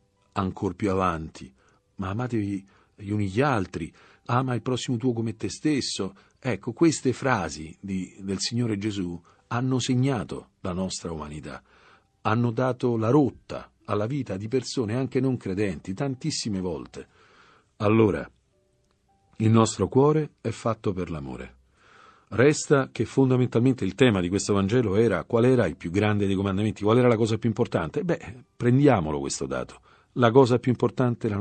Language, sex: Italian, male